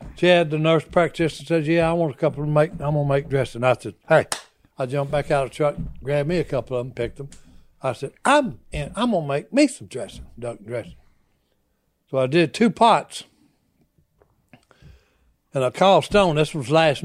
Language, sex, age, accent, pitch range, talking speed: English, male, 60-79, American, 135-190 Hz, 210 wpm